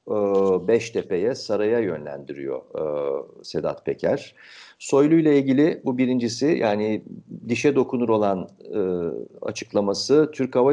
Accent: native